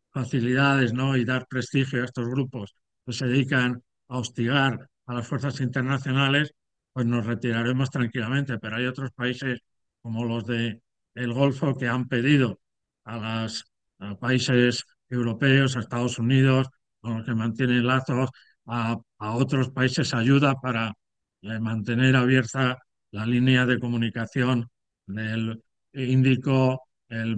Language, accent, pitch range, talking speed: Spanish, Spanish, 115-135 Hz, 130 wpm